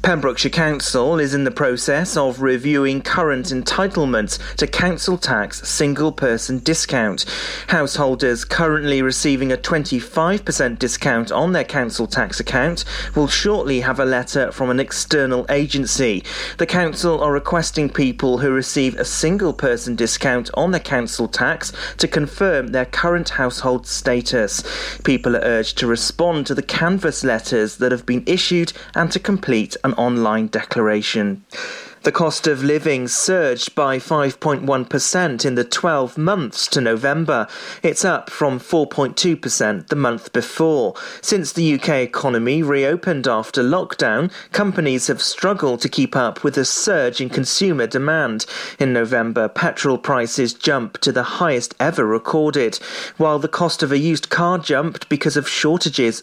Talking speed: 145 wpm